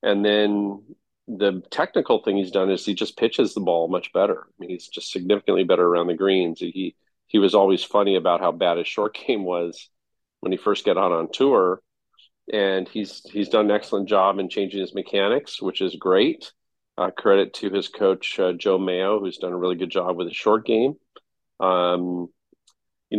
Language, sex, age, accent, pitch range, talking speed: English, male, 40-59, American, 90-105 Hz, 200 wpm